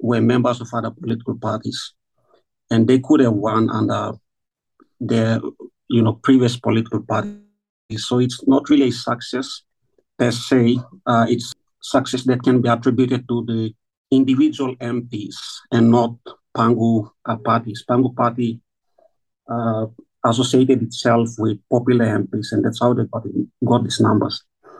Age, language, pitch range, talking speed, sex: 50-69, English, 110-125 Hz, 140 wpm, male